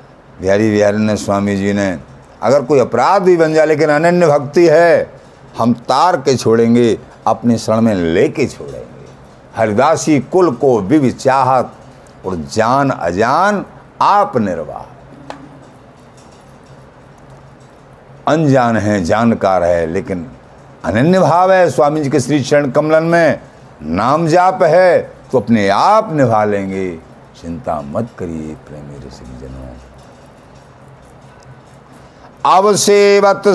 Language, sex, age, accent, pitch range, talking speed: Hindi, male, 60-79, native, 100-145 Hz, 115 wpm